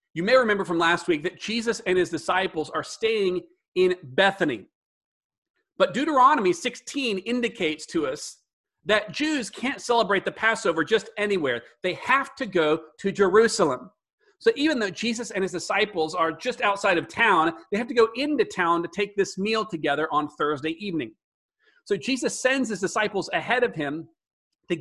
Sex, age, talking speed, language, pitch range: male, 40-59, 170 wpm, English, 175-250 Hz